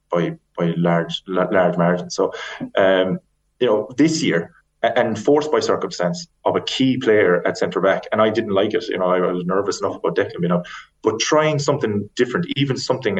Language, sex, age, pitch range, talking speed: English, male, 20-39, 90-125 Hz, 195 wpm